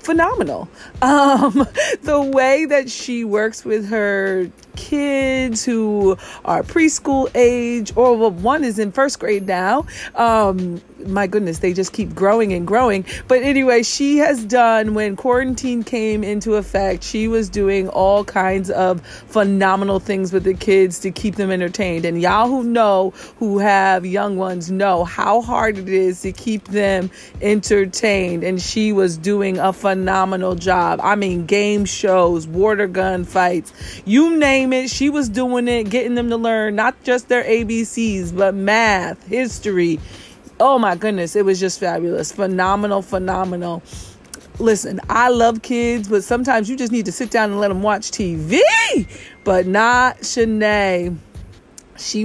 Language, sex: English, female